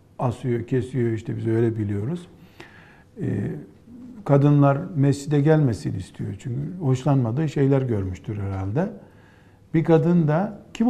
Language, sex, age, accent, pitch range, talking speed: Turkish, male, 50-69, native, 100-145 Hz, 105 wpm